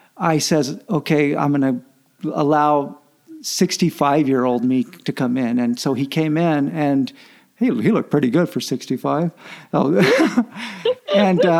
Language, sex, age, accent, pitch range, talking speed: English, male, 50-69, American, 150-185 Hz, 135 wpm